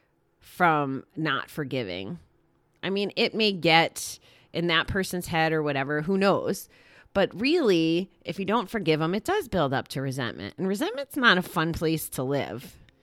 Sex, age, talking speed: female, 30-49, 170 wpm